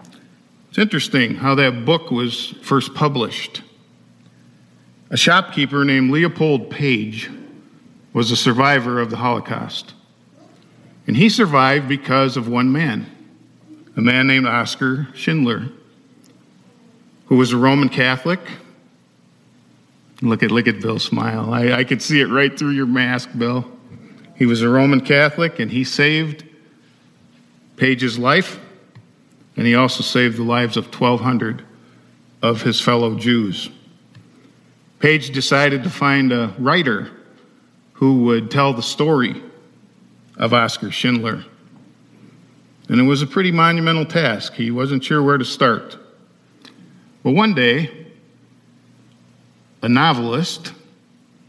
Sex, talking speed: male, 125 wpm